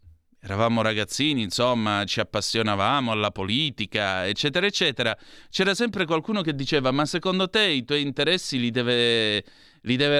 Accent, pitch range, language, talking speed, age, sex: native, 115-150 Hz, Italian, 140 wpm, 30-49, male